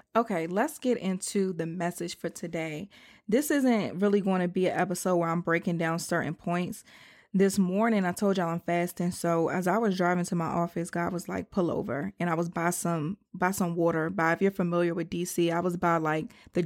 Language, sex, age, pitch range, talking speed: English, female, 20-39, 170-195 Hz, 220 wpm